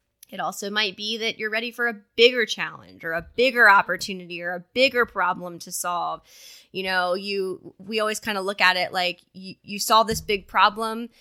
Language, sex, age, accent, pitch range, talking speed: English, female, 20-39, American, 185-240 Hz, 205 wpm